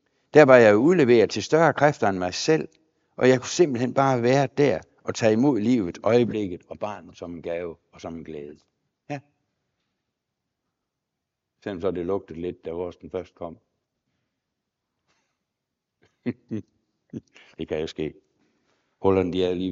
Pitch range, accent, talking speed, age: 105-160 Hz, native, 150 wpm, 60-79